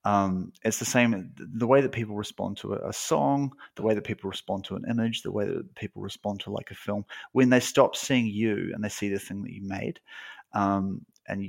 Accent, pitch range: Australian, 100-130 Hz